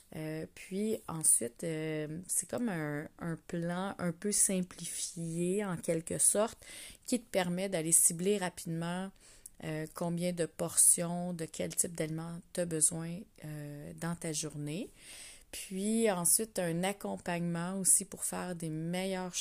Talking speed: 140 wpm